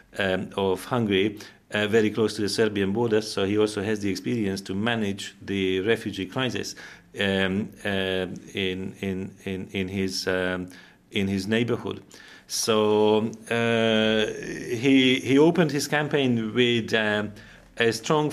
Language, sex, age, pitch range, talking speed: Finnish, male, 40-59, 95-115 Hz, 140 wpm